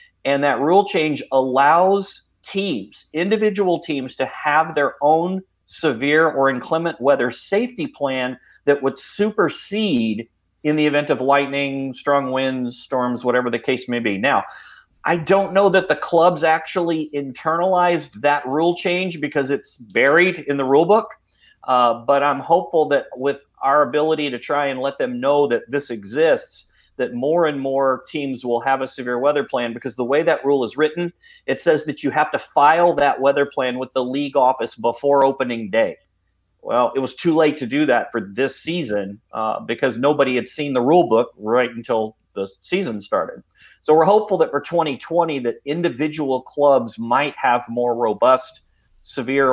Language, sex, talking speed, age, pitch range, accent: English, male, 175 wpm, 40-59, 125-165 Hz, American